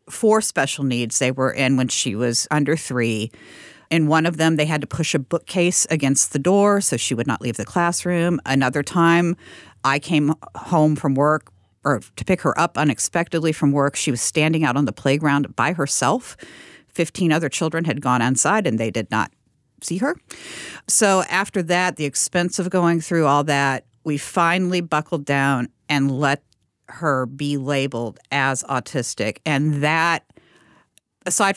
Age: 50-69